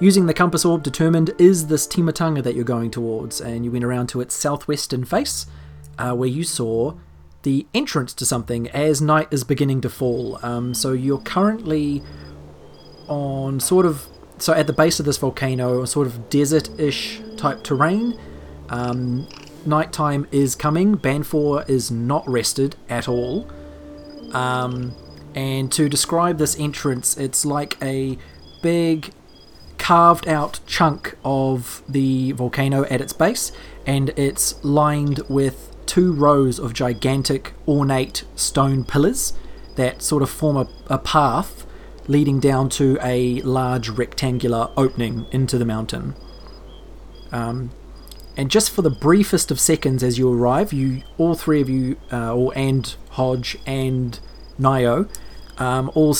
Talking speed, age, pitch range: 140 wpm, 30-49, 125-150 Hz